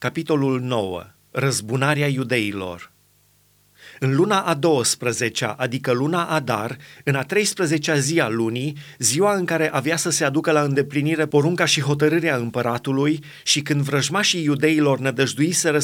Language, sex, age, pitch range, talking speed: Romanian, male, 30-49, 130-165 Hz, 135 wpm